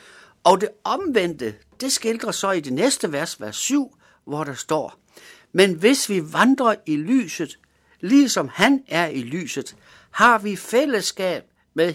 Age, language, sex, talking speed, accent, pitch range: 60-79, Danish, male, 150 wpm, native, 200-265 Hz